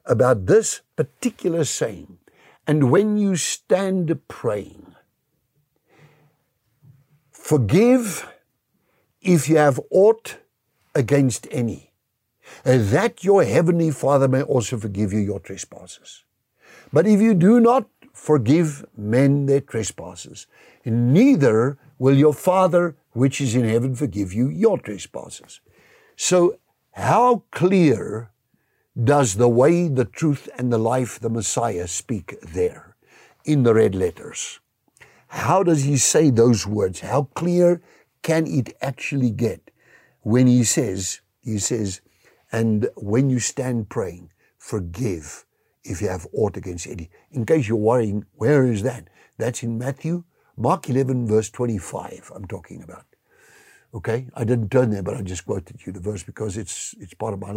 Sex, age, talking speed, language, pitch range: male, 60-79, 135 wpm, English, 115-160 Hz